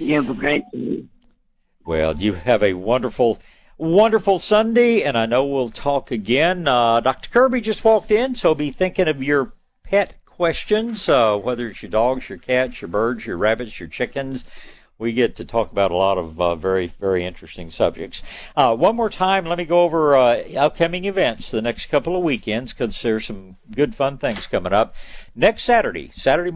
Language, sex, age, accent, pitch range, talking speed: English, male, 60-79, American, 100-145 Hz, 185 wpm